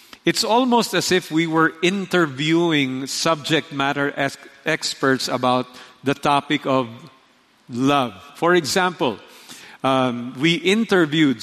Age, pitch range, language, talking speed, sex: 50-69, 135-170 Hz, English, 105 wpm, male